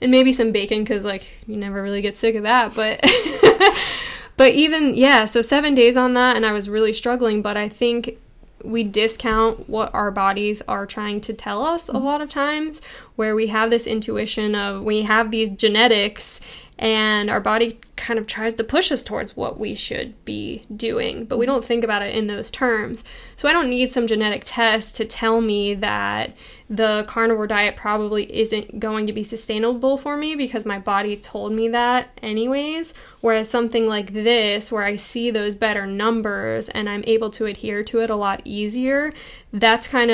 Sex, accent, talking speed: female, American, 195 wpm